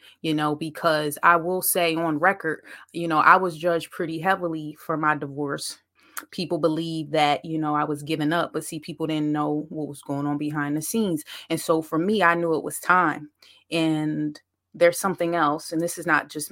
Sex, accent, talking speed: female, American, 205 wpm